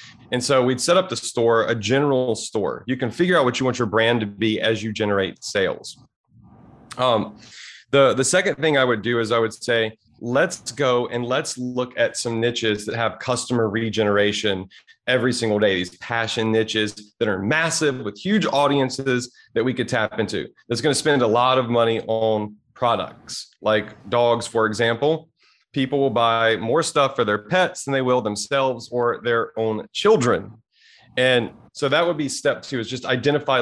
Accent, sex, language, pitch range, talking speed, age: American, male, English, 110-135 Hz, 190 wpm, 30-49